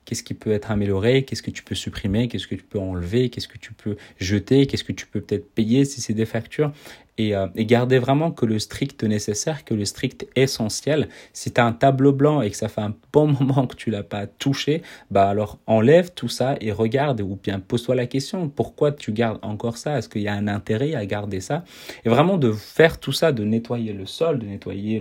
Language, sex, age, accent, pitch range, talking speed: French, male, 30-49, French, 105-130 Hz, 240 wpm